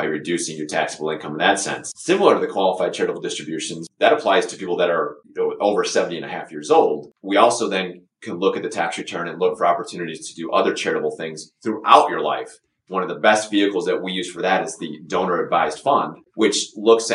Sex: male